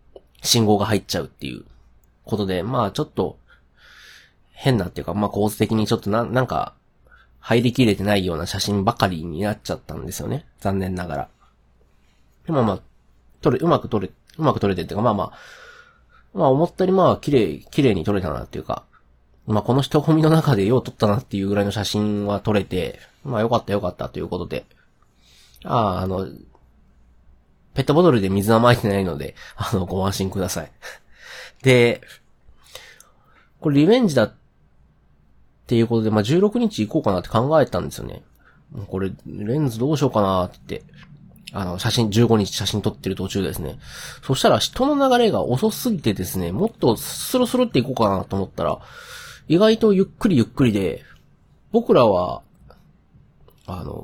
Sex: male